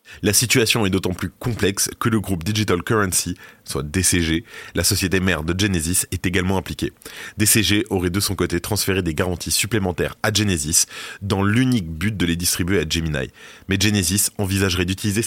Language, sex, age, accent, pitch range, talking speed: French, male, 20-39, French, 85-105 Hz, 175 wpm